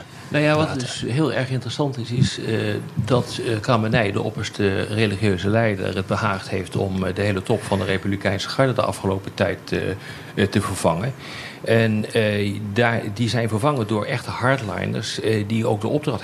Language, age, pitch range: Dutch, 40-59, 100-130 Hz